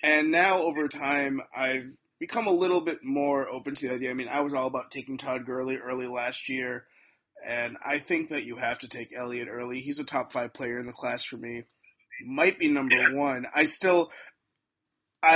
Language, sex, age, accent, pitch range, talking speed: English, male, 30-49, American, 130-180 Hz, 210 wpm